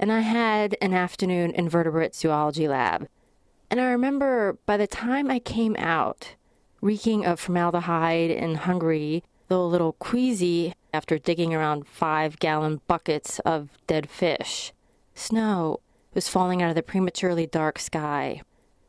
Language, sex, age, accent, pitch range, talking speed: English, female, 30-49, American, 165-210 Hz, 135 wpm